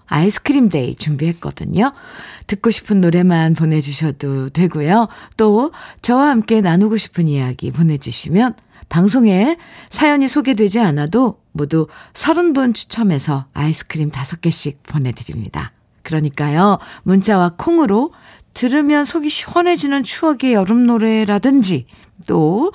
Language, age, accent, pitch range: Korean, 50-69, native, 155-235 Hz